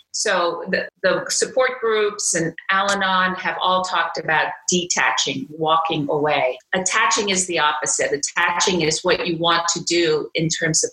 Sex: female